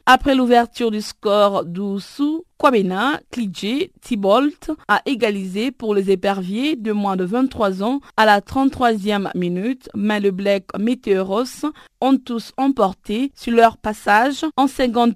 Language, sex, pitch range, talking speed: French, female, 200-255 Hz, 135 wpm